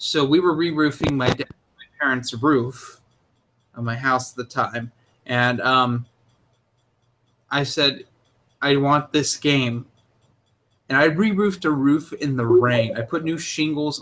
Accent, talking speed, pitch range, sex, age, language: American, 150 wpm, 120-150 Hz, male, 20-39, English